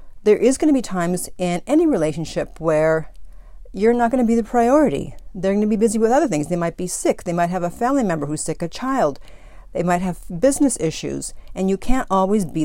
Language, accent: English, American